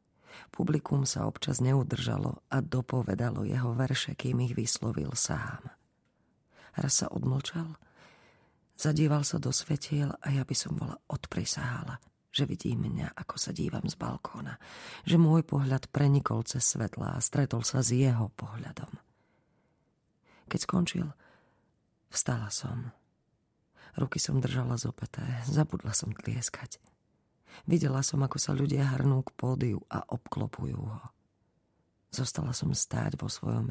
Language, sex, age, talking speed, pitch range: Slovak, female, 40-59, 130 wpm, 120-145 Hz